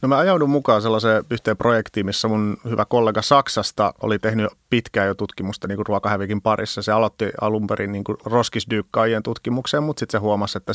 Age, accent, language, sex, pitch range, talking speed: 30-49, native, Finnish, male, 105-115 Hz, 180 wpm